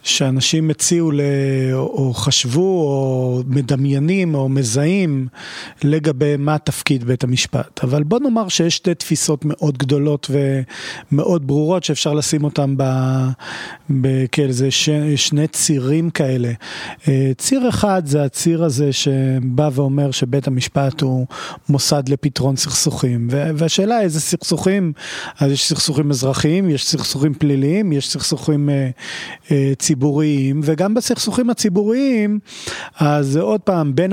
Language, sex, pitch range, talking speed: Hebrew, male, 140-165 Hz, 120 wpm